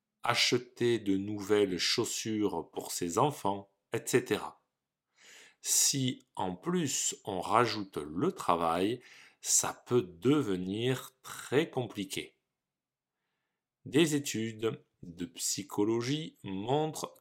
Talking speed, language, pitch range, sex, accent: 85 wpm, French, 100-140 Hz, male, French